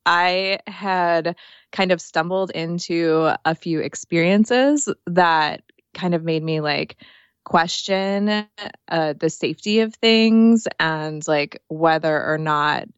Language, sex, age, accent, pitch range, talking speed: English, female, 20-39, American, 155-195 Hz, 120 wpm